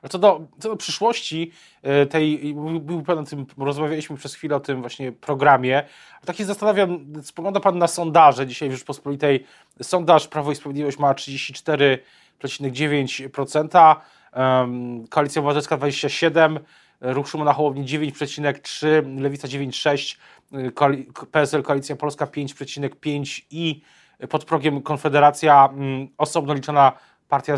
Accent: native